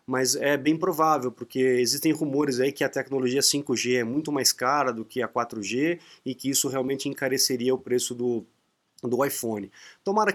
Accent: Brazilian